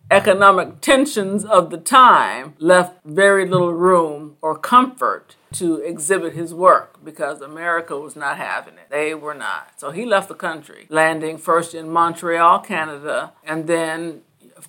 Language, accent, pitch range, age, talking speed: English, American, 160-200 Hz, 50-69, 150 wpm